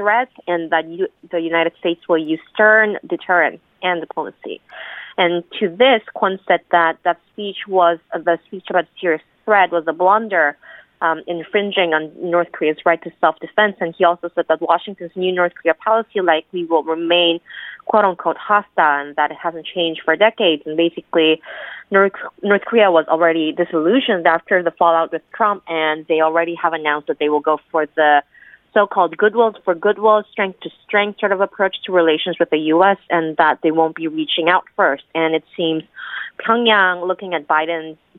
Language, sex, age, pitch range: Korean, female, 20-39, 160-200 Hz